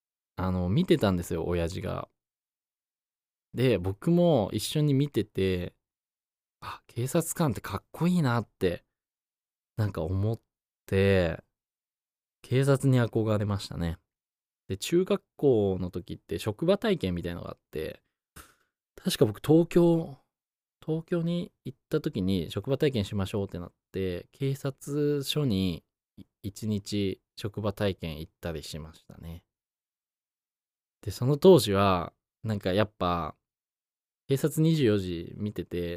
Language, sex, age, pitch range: Japanese, male, 20-39, 90-140 Hz